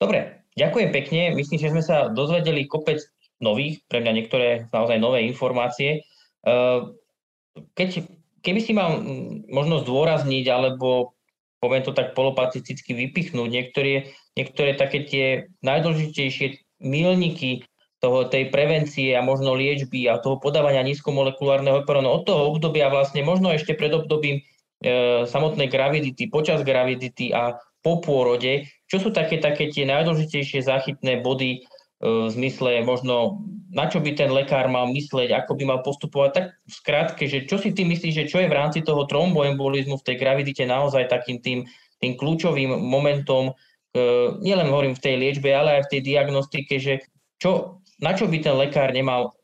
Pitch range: 130-155 Hz